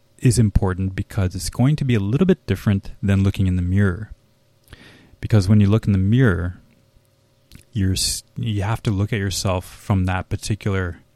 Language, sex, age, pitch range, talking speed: English, male, 20-39, 95-115 Hz, 175 wpm